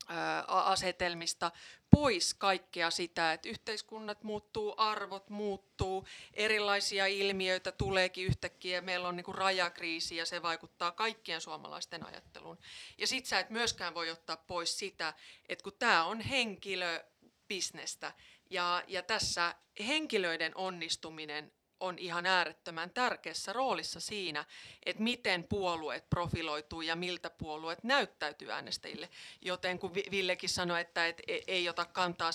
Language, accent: Finnish, native